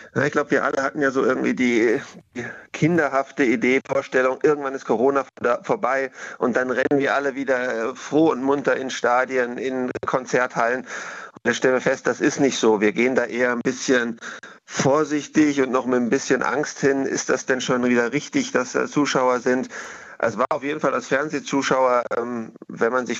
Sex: male